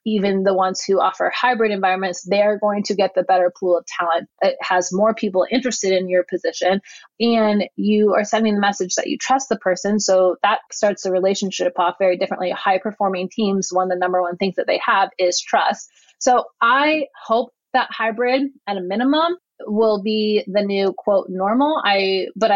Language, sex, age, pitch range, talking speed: English, female, 20-39, 185-215 Hz, 195 wpm